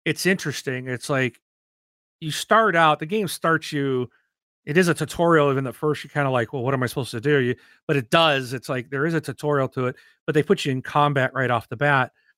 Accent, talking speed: American, 245 wpm